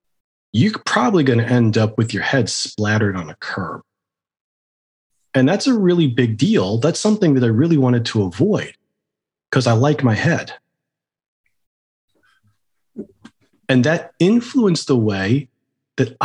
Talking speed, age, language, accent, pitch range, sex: 140 wpm, 30-49, English, American, 110-150 Hz, male